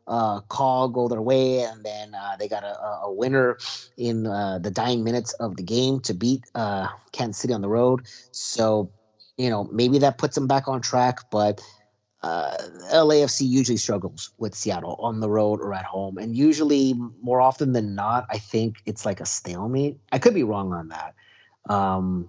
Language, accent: English, American